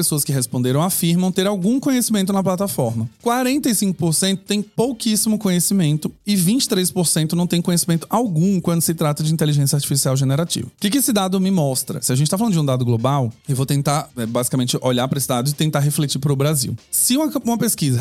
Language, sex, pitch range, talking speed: Portuguese, male, 130-175 Hz, 195 wpm